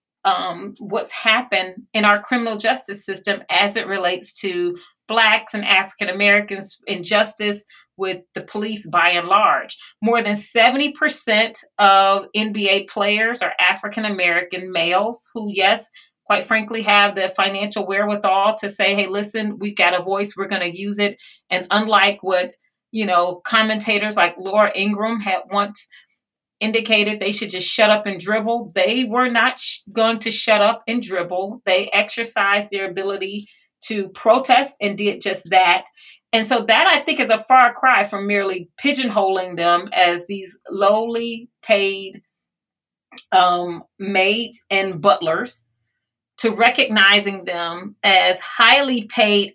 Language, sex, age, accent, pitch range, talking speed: English, female, 40-59, American, 190-225 Hz, 145 wpm